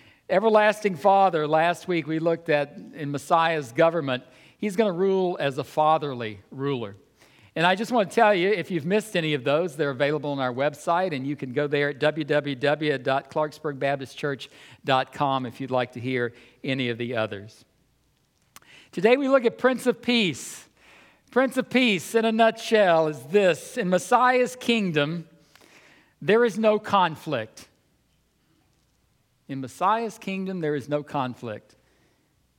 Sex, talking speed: male, 150 wpm